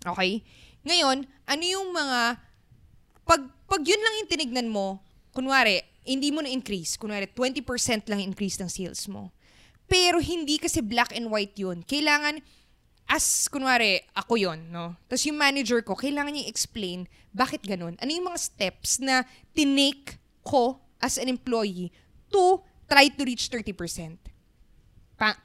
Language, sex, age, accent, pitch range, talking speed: Filipino, female, 20-39, native, 210-290 Hz, 140 wpm